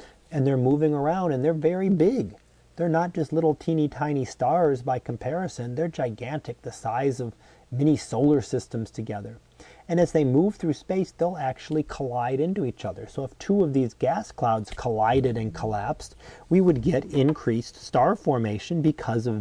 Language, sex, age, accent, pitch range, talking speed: English, male, 40-59, American, 120-160 Hz, 175 wpm